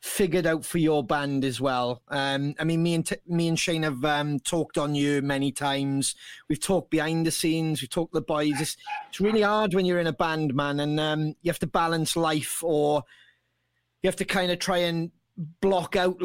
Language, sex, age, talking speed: English, male, 30-49, 220 wpm